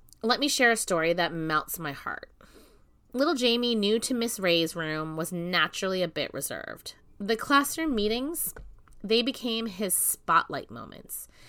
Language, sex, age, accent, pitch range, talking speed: English, female, 20-39, American, 165-230 Hz, 150 wpm